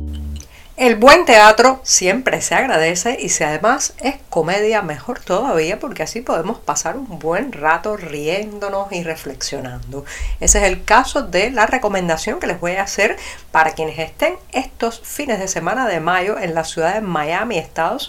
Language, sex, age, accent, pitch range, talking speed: Spanish, female, 50-69, American, 165-235 Hz, 165 wpm